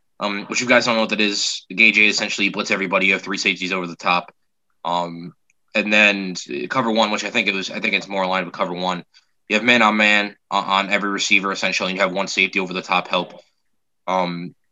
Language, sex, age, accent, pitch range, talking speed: English, male, 20-39, American, 95-115 Hz, 225 wpm